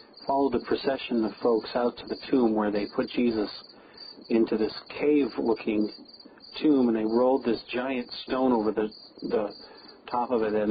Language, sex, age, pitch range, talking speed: English, male, 40-59, 110-135 Hz, 170 wpm